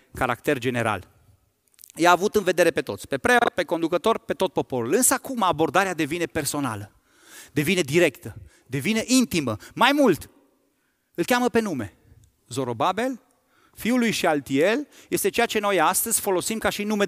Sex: male